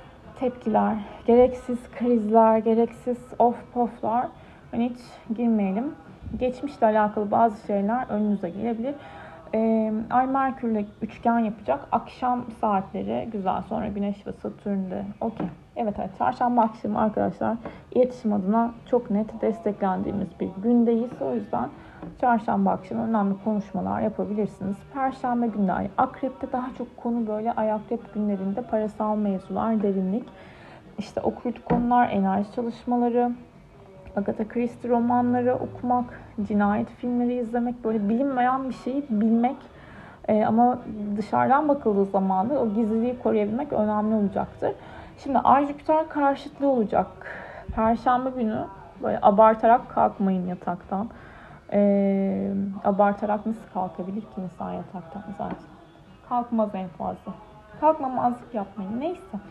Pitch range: 205-245 Hz